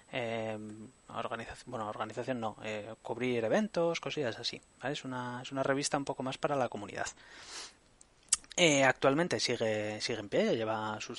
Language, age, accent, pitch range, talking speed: Spanish, 20-39, Spanish, 115-150 Hz, 160 wpm